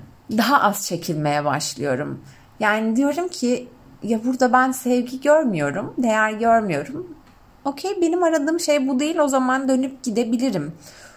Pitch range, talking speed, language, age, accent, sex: 160-260 Hz, 130 wpm, Turkish, 30-49, native, female